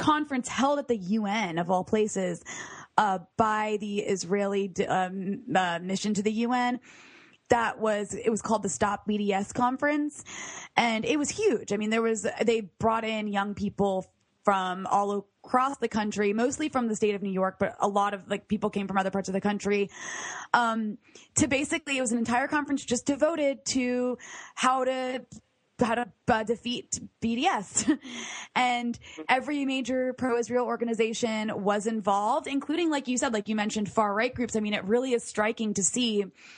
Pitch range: 200-245 Hz